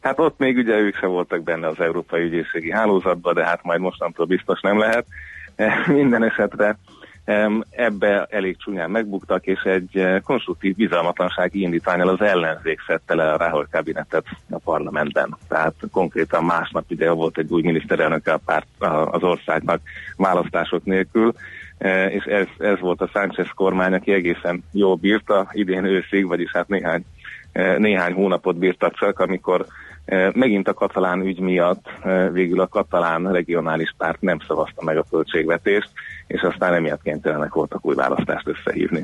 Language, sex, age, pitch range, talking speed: Hungarian, male, 30-49, 90-100 Hz, 150 wpm